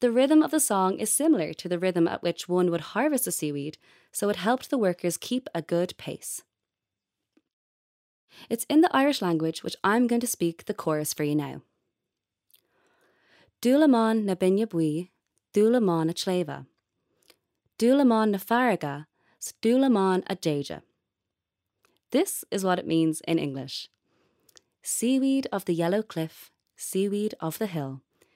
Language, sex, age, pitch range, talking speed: English, female, 20-39, 170-255 Hz, 140 wpm